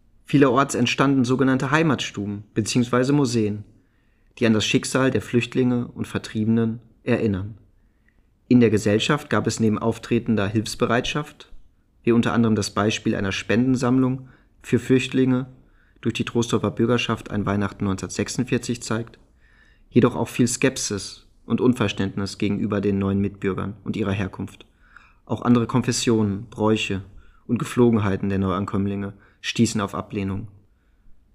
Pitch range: 100-125 Hz